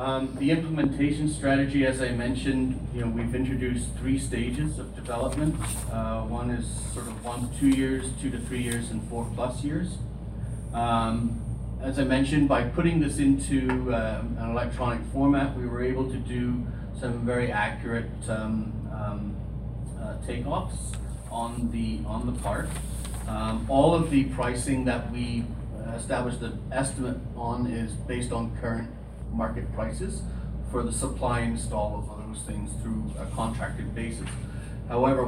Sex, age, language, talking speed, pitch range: male, 40-59, English, 155 wpm, 110-125 Hz